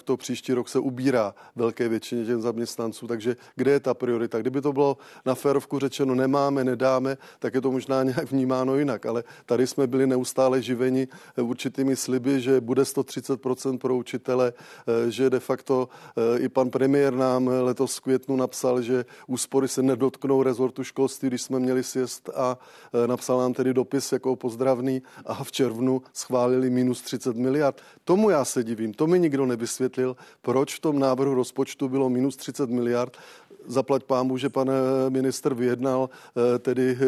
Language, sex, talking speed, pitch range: Czech, male, 160 wpm, 125-135 Hz